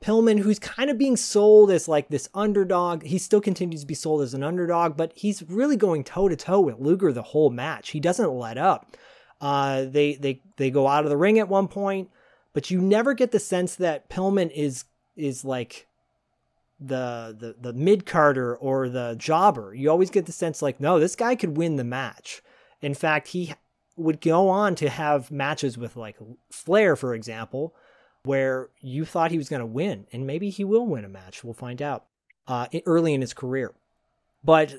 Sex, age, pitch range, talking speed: male, 30-49, 140-185 Hz, 200 wpm